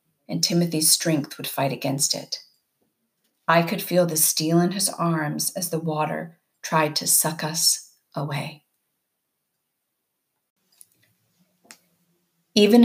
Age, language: 40-59, English